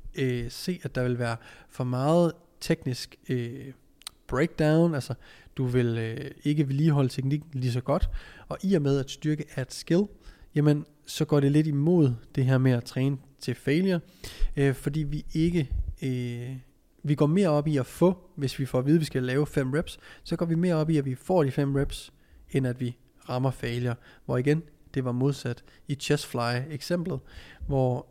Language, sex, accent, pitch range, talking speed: Danish, male, native, 130-155 Hz, 190 wpm